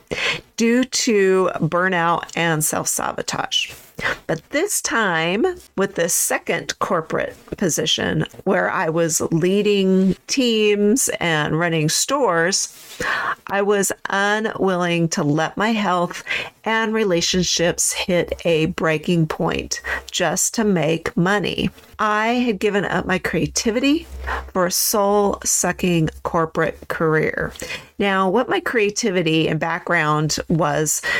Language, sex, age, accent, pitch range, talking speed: English, female, 40-59, American, 165-220 Hz, 110 wpm